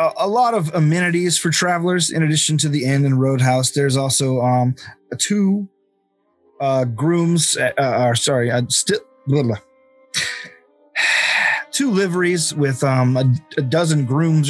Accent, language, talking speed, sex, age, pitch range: American, English, 140 wpm, male, 30-49, 130-165 Hz